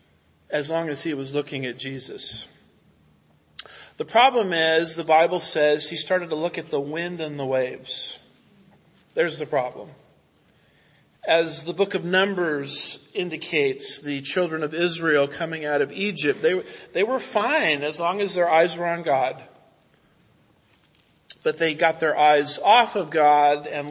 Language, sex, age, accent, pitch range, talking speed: English, male, 40-59, American, 140-175 Hz, 155 wpm